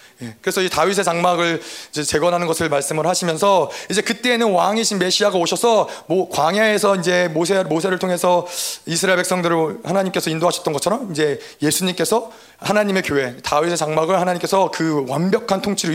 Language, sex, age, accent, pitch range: Korean, male, 30-49, native, 180-260 Hz